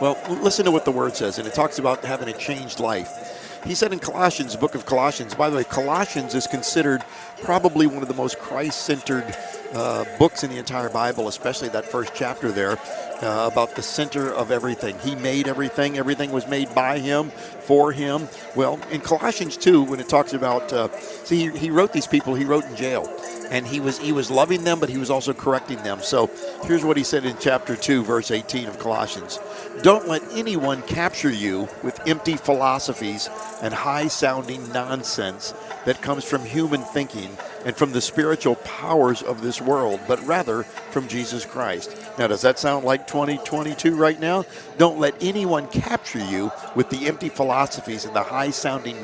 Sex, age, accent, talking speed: male, 50-69, American, 185 wpm